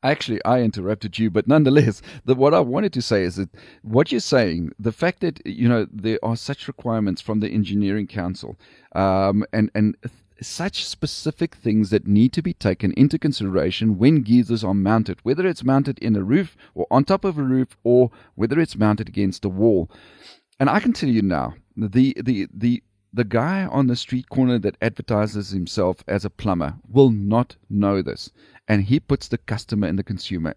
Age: 40-59